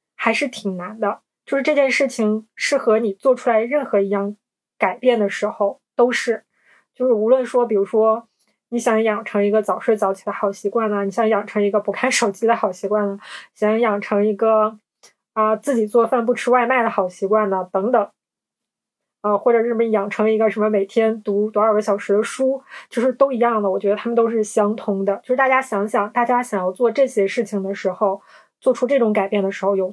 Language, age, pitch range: Chinese, 20-39, 200-235 Hz